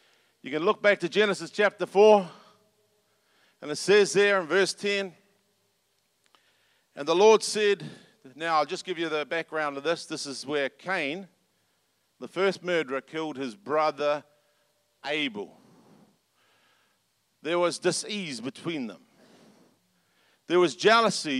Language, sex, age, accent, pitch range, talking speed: English, male, 50-69, Australian, 165-215 Hz, 130 wpm